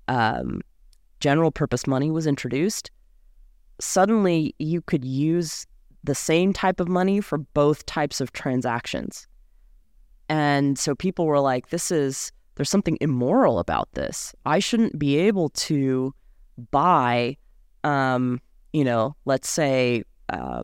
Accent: American